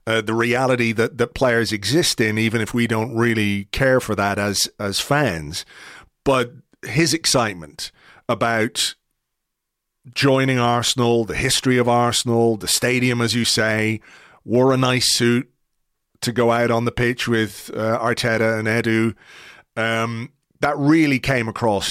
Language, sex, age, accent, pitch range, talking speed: English, male, 40-59, British, 110-130 Hz, 145 wpm